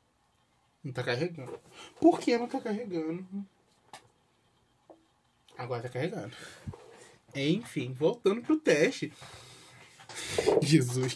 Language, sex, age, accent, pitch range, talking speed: Portuguese, male, 20-39, Brazilian, 145-215 Hz, 85 wpm